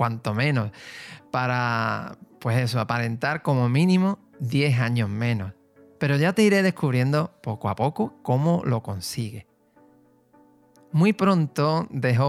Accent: Spanish